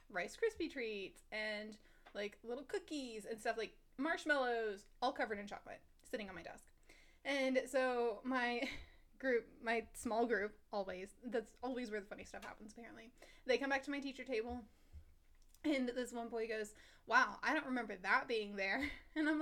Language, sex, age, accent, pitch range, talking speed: English, female, 20-39, American, 230-345 Hz, 175 wpm